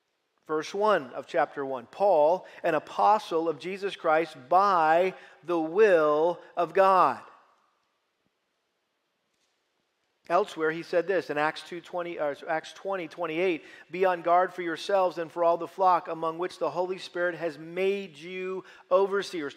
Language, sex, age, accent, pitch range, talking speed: English, male, 50-69, American, 170-195 Hz, 145 wpm